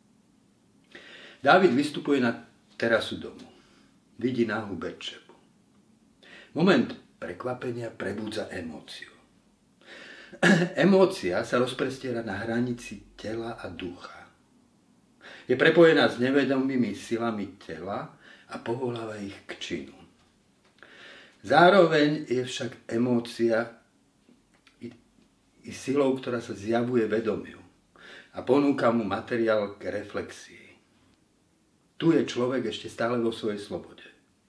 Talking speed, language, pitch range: 95 wpm, Slovak, 115-135 Hz